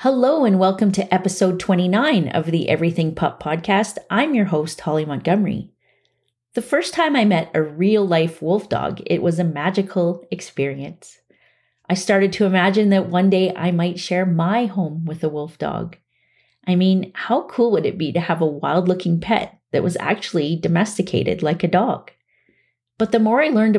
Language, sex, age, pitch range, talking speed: English, female, 30-49, 160-200 Hz, 180 wpm